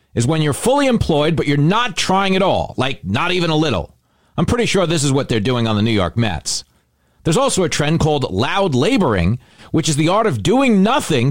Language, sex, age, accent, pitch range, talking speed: English, male, 40-59, American, 130-190 Hz, 230 wpm